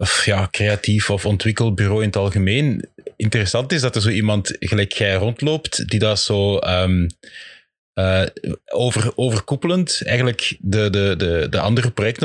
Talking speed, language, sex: 130 wpm, Dutch, male